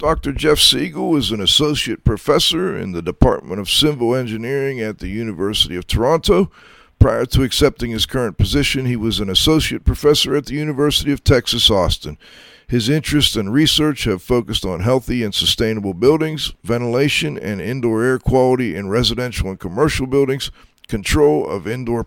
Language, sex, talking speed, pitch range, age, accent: English, male, 160 wpm, 110-145 Hz, 50-69, American